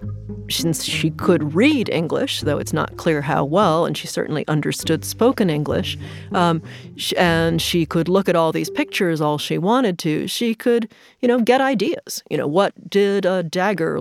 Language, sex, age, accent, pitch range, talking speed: English, female, 40-59, American, 155-200 Hz, 180 wpm